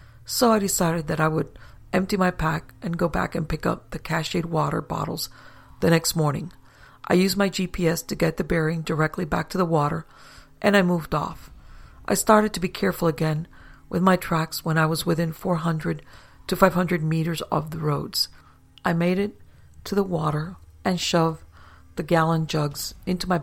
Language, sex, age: English, female, 40-59